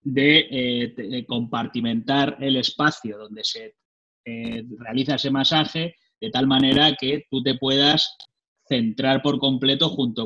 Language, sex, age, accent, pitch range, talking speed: Spanish, male, 30-49, Spanish, 120-150 Hz, 135 wpm